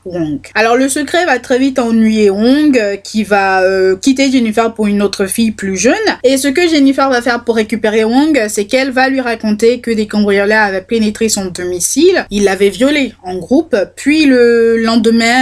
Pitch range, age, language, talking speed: 205-260 Hz, 20-39, French, 190 wpm